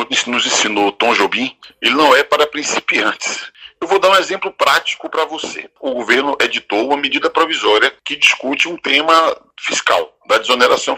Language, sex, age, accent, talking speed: Portuguese, male, 40-59, Brazilian, 165 wpm